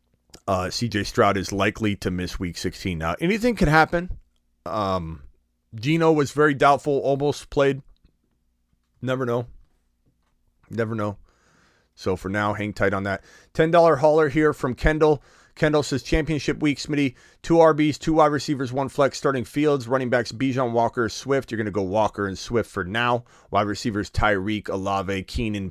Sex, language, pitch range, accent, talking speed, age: male, English, 95-135 Hz, American, 160 wpm, 30-49